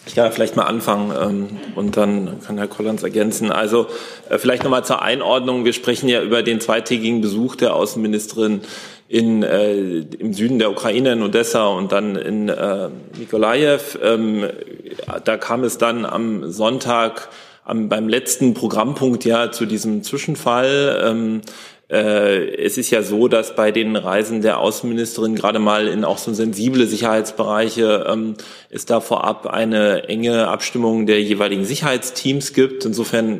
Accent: German